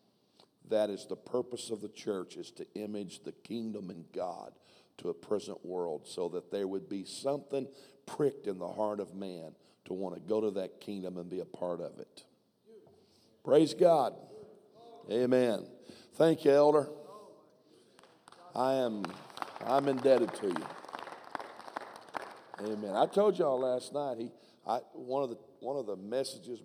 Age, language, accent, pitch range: 50-69, English, American, 105-140 Hz